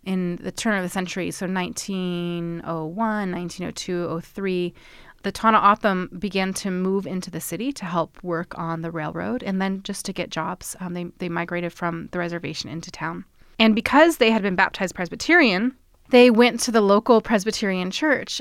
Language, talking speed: English, 175 wpm